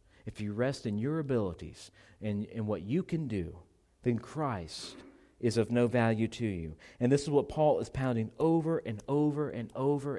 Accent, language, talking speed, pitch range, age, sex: American, English, 190 wpm, 105-135 Hz, 40-59, male